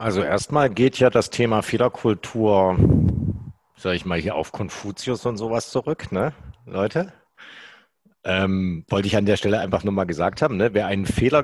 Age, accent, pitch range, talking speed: 50-69, German, 100-130 Hz, 175 wpm